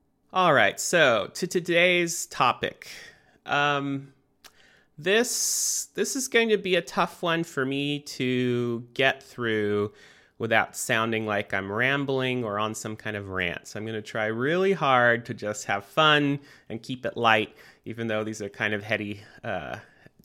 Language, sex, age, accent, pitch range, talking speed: English, male, 30-49, American, 105-135 Hz, 165 wpm